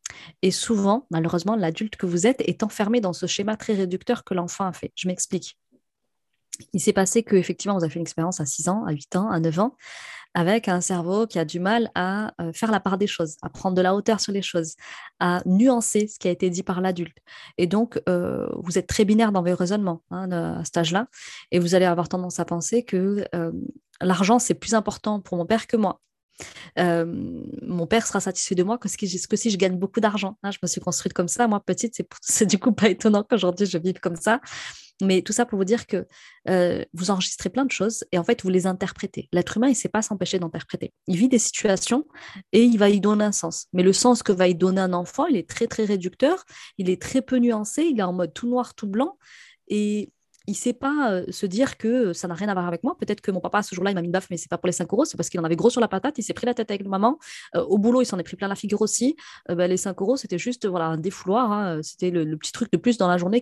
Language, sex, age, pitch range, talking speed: French, female, 20-39, 180-225 Hz, 265 wpm